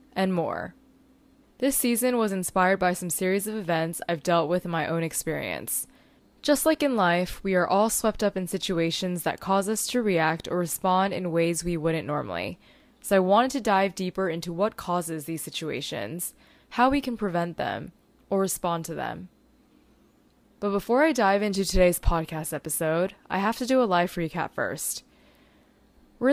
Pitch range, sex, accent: 170-220 Hz, female, American